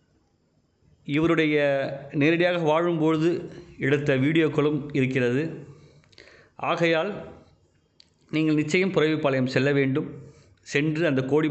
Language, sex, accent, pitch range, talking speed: Tamil, male, native, 125-150 Hz, 80 wpm